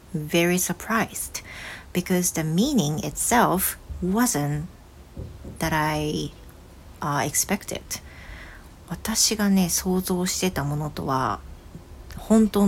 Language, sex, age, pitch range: Japanese, female, 40-59, 140-195 Hz